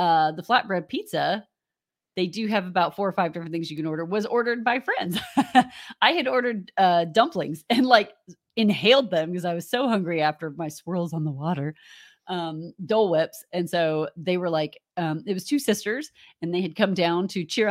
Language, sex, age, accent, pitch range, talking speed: English, female, 30-49, American, 160-220 Hz, 205 wpm